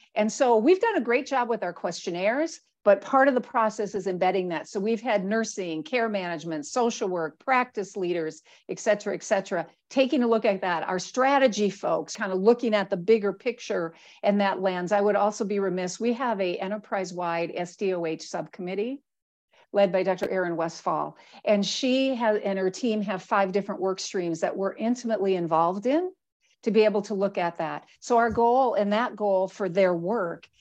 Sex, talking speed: female, 190 wpm